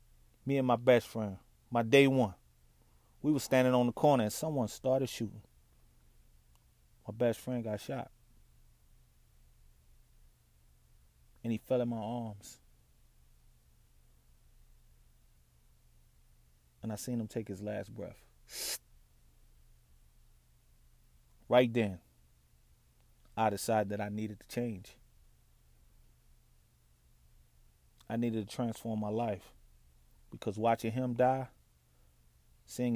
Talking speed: 105 wpm